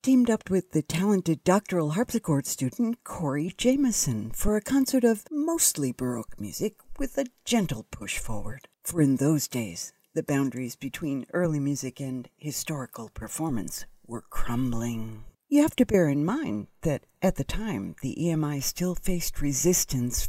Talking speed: 150 wpm